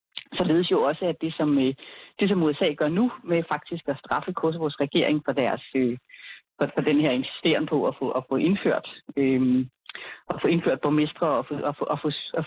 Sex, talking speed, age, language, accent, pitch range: female, 185 wpm, 30-49, Danish, native, 150-190 Hz